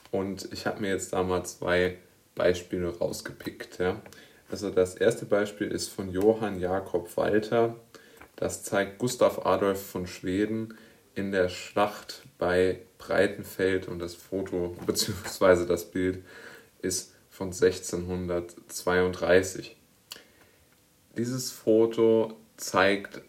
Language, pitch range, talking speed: German, 90-110 Hz, 110 wpm